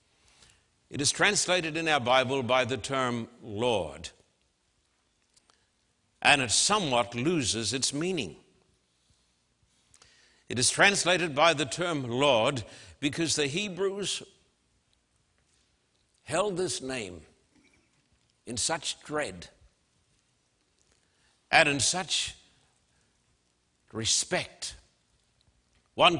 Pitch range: 110-150 Hz